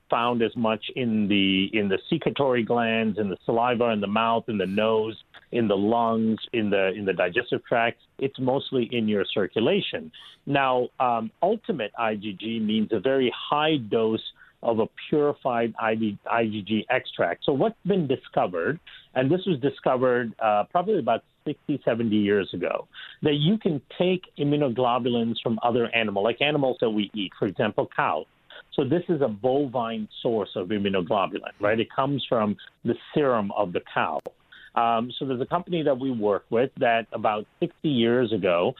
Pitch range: 110-135 Hz